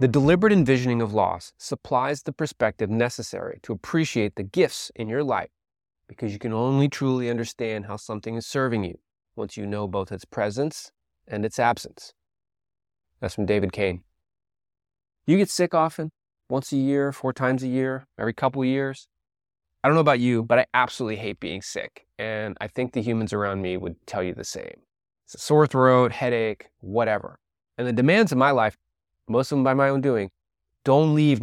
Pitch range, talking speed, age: 100-130 Hz, 185 wpm, 20-39